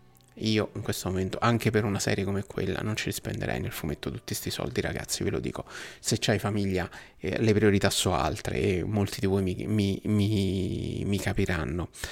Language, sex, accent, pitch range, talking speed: Italian, male, native, 105-130 Hz, 200 wpm